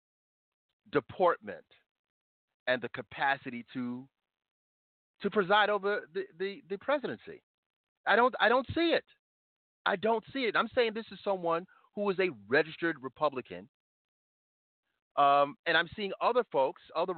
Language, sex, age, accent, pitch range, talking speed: English, male, 40-59, American, 145-200 Hz, 135 wpm